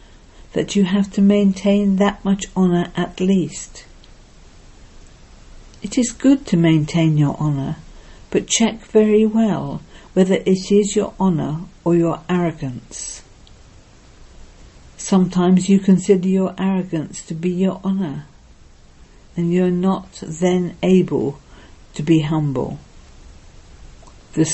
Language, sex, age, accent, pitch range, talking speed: English, female, 60-79, British, 155-195 Hz, 115 wpm